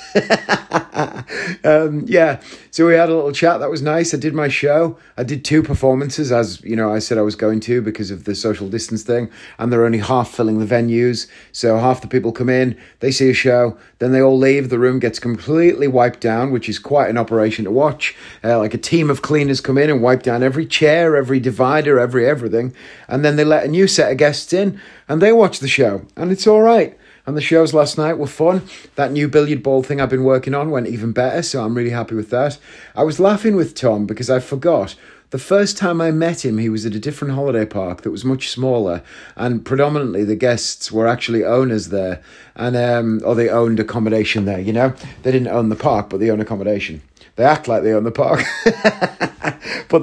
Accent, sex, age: British, male, 30-49